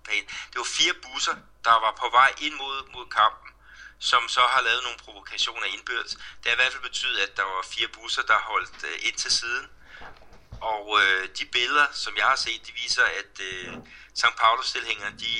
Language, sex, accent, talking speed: Danish, male, native, 185 wpm